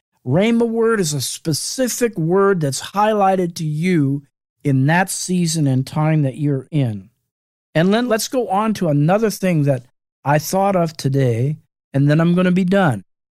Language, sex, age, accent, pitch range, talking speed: English, male, 50-69, American, 145-205 Hz, 170 wpm